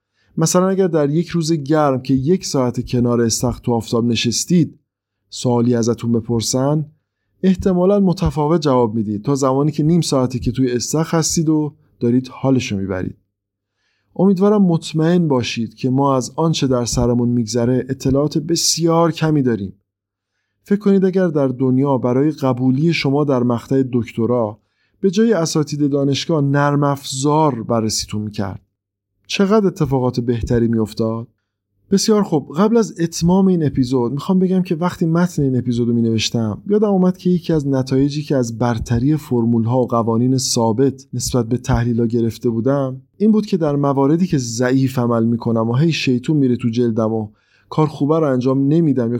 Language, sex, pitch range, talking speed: English, male, 120-160 Hz, 160 wpm